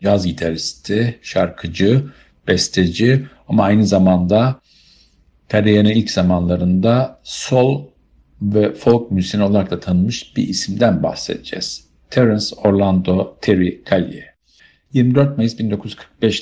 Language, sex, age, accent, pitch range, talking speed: Turkish, male, 50-69, native, 90-115 Hz, 90 wpm